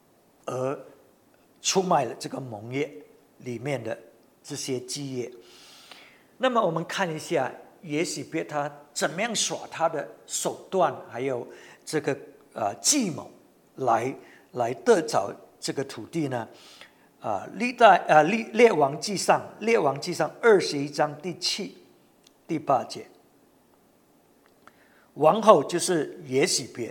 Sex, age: male, 60-79